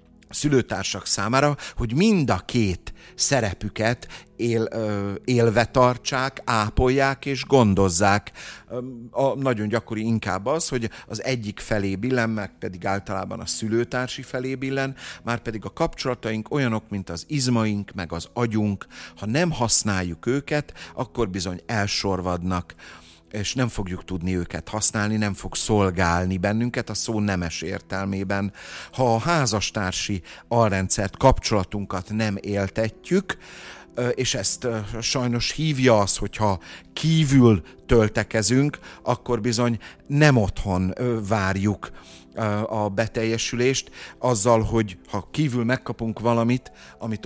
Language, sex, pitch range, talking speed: Hungarian, male, 95-120 Hz, 115 wpm